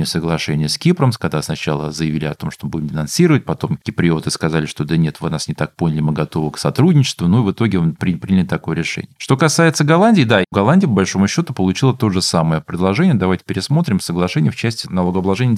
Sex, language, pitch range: male, Russian, 90-130 Hz